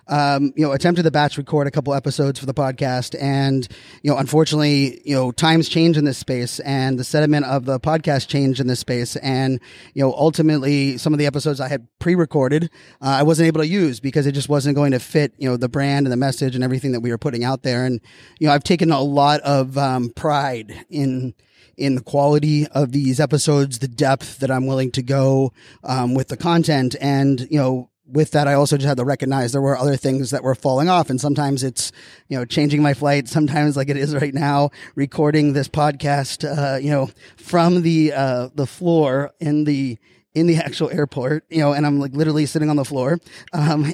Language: English